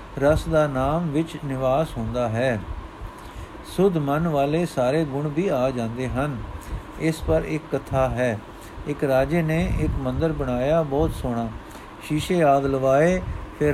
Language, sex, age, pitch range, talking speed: Punjabi, male, 50-69, 130-165 Hz, 140 wpm